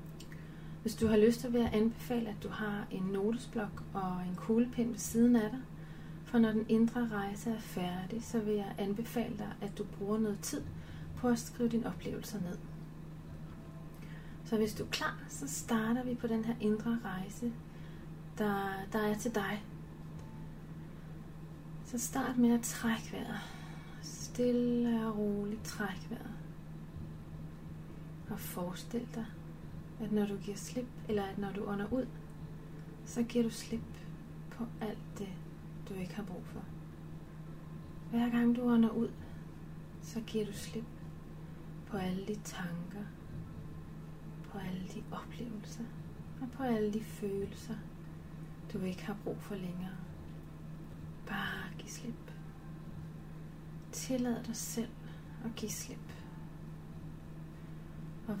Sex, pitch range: female, 160-225 Hz